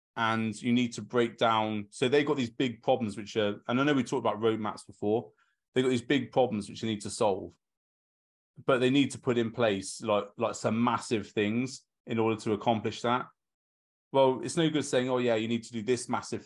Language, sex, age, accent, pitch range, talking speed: English, male, 30-49, British, 105-130 Hz, 225 wpm